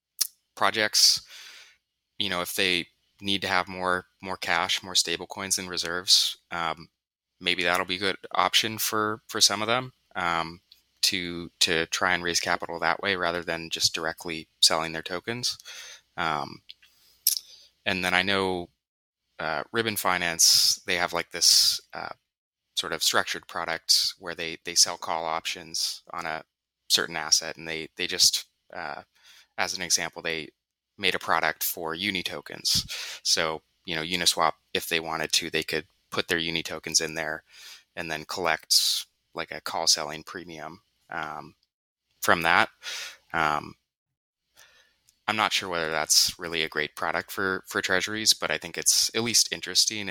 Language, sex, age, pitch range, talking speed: English, male, 20-39, 80-95 Hz, 160 wpm